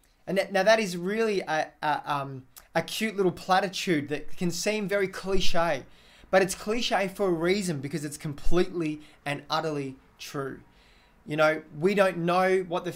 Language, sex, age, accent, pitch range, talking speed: English, male, 20-39, Australian, 140-180 Hz, 155 wpm